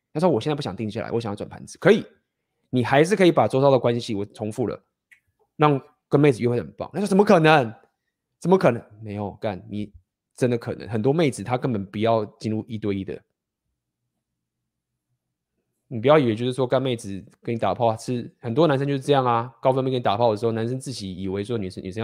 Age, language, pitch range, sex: 20-39, Chinese, 105-135 Hz, male